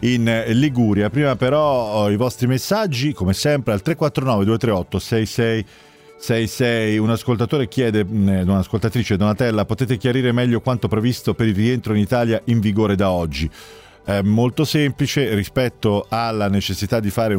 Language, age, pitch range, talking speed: Italian, 40-59, 90-120 Hz, 135 wpm